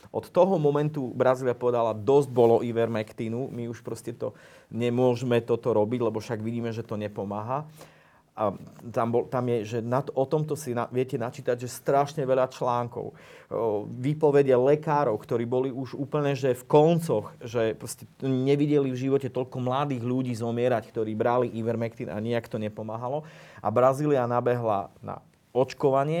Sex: male